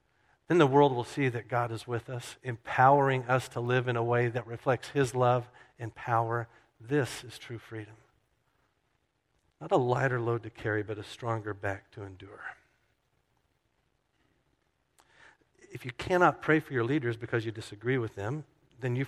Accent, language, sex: American, English, male